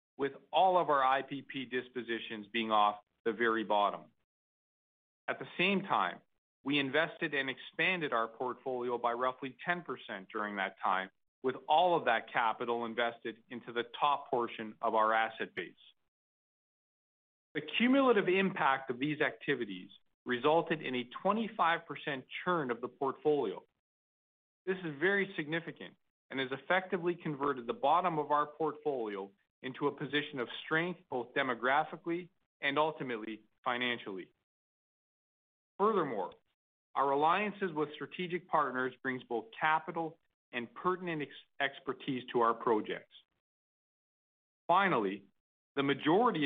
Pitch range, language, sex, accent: 120-165 Hz, English, male, American